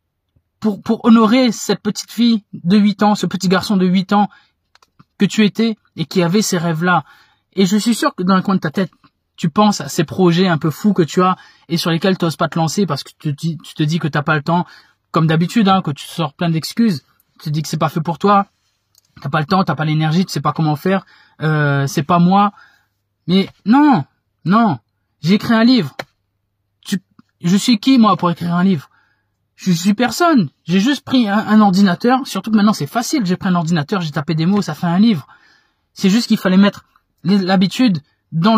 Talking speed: 225 wpm